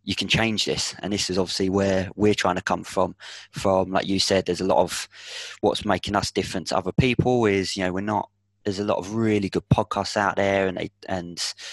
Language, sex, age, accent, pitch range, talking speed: English, male, 20-39, British, 90-100 Hz, 235 wpm